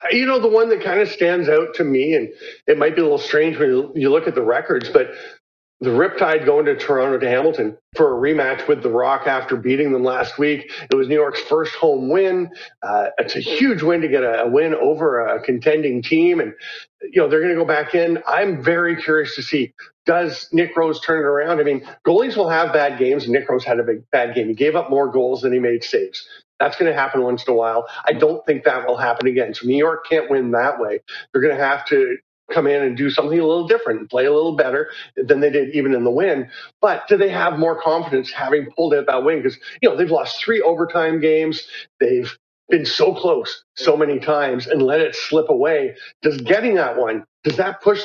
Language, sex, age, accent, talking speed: English, male, 40-59, American, 235 wpm